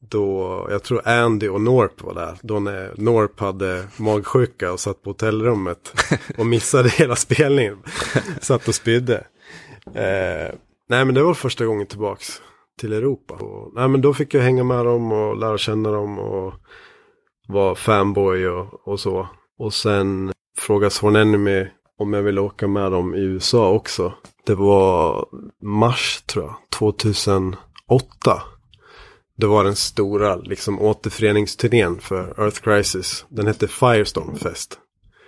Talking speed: 140 wpm